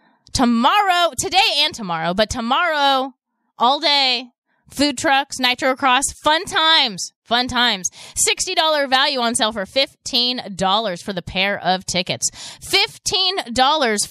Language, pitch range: English, 215-310 Hz